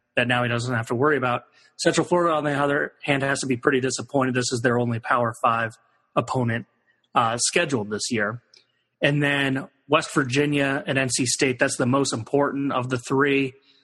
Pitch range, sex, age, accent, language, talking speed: 125-145 Hz, male, 30-49, American, English, 190 wpm